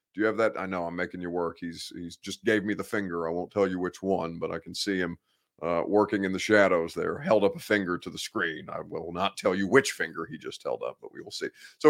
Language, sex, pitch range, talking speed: English, male, 95-140 Hz, 285 wpm